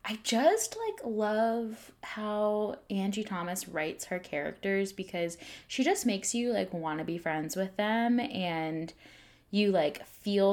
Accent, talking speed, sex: American, 150 wpm, female